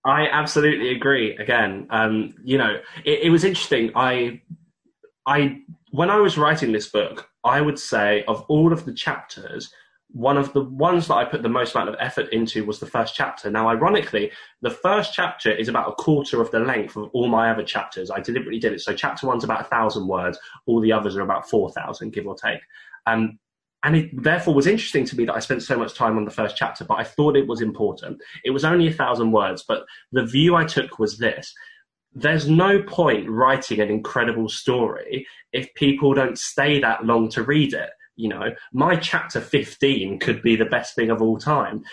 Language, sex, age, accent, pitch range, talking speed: English, male, 10-29, British, 115-150 Hz, 210 wpm